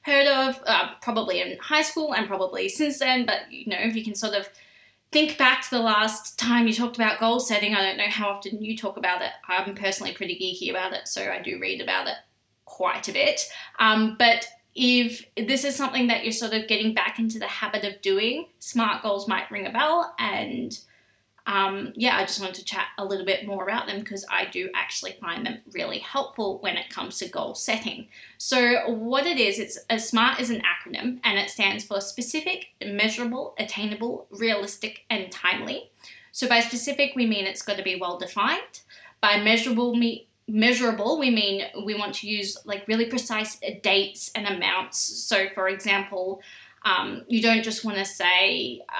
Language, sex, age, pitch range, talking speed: English, female, 20-39, 195-240 Hz, 200 wpm